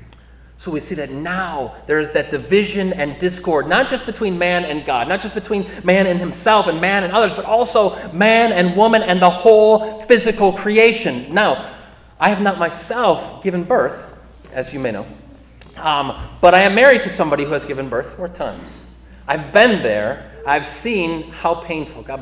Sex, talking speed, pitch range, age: male, 185 wpm, 155-215 Hz, 30-49